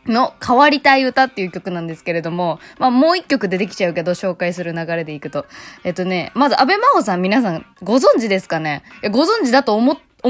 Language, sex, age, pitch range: Japanese, female, 20-39, 180-275 Hz